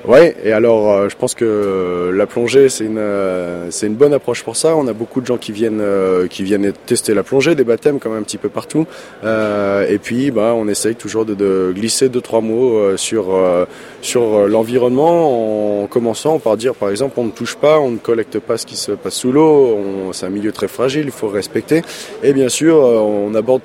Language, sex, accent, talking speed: French, male, French, 235 wpm